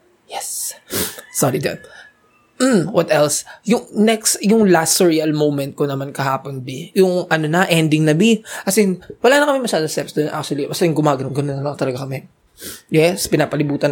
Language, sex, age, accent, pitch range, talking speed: English, male, 20-39, Filipino, 150-245 Hz, 170 wpm